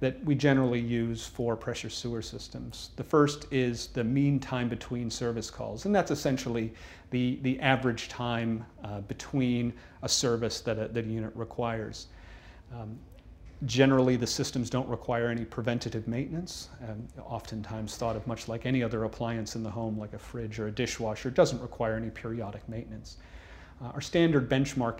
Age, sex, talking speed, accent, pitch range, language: 40-59, male, 165 wpm, American, 110-125 Hz, English